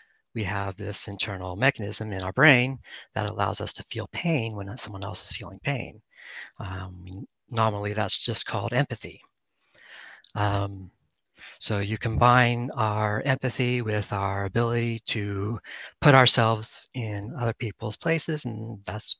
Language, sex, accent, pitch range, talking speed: English, male, American, 100-120 Hz, 140 wpm